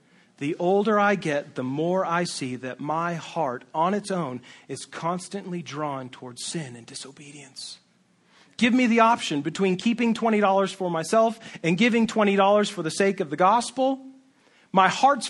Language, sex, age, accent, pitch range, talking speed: English, male, 40-59, American, 150-210 Hz, 160 wpm